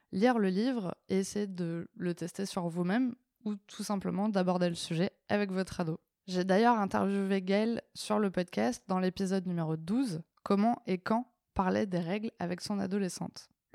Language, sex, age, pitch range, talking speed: French, female, 20-39, 180-220 Hz, 180 wpm